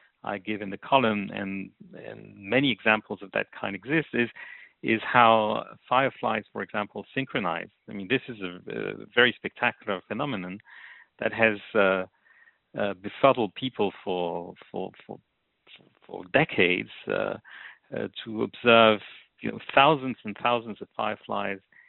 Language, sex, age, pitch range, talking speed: English, male, 50-69, 100-120 Hz, 140 wpm